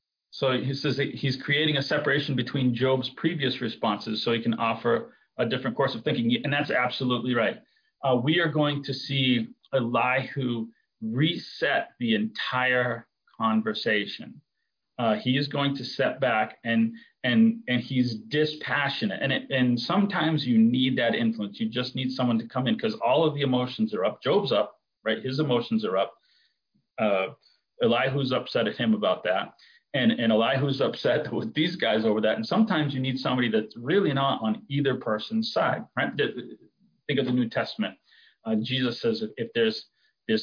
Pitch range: 120-165 Hz